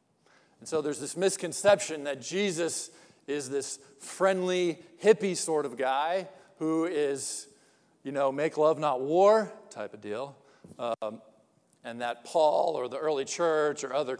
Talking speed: 150 wpm